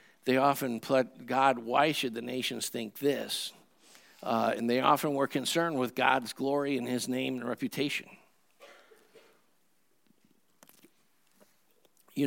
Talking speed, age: 120 wpm, 60-79